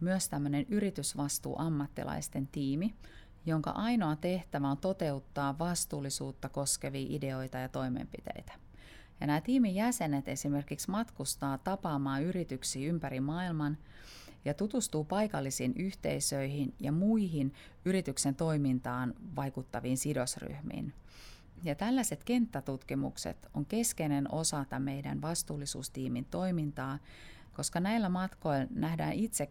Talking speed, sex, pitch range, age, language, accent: 100 wpm, female, 135-180 Hz, 30-49, Finnish, native